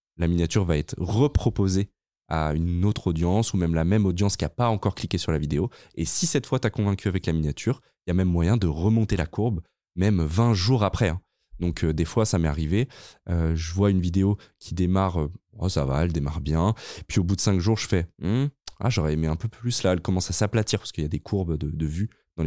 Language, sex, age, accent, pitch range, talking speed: French, male, 20-39, French, 85-110 Hz, 255 wpm